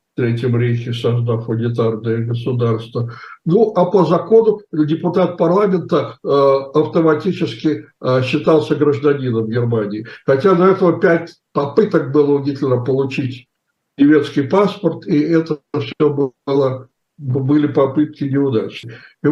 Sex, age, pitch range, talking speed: male, 60-79, 135-175 Hz, 110 wpm